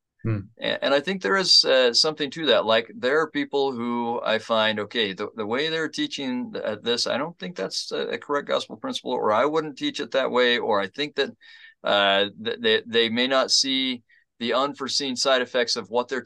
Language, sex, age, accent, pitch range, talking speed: English, male, 30-49, American, 115-150 Hz, 215 wpm